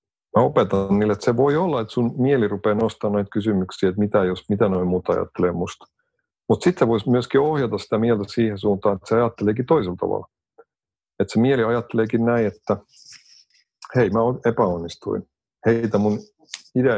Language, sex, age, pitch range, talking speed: Finnish, male, 50-69, 95-125 Hz, 165 wpm